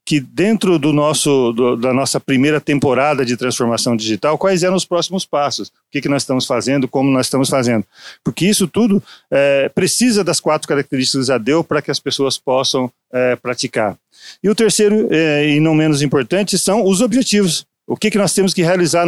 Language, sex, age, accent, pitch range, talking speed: Portuguese, male, 40-59, Brazilian, 130-180 Hz, 195 wpm